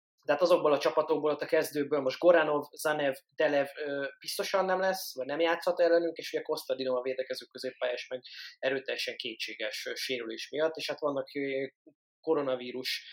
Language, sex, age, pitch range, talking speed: Hungarian, male, 20-39, 130-165 Hz, 160 wpm